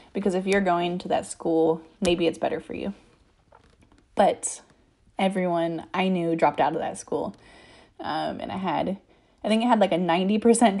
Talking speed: 180 wpm